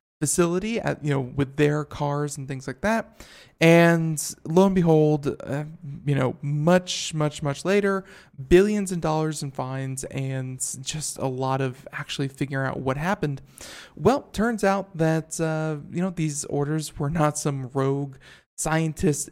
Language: English